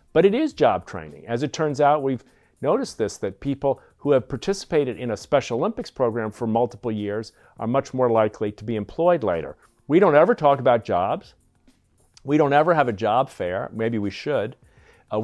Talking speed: 195 wpm